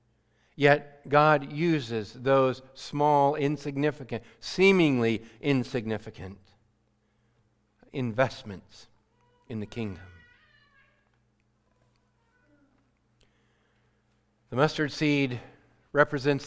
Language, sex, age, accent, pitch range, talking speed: English, male, 50-69, American, 110-150 Hz, 60 wpm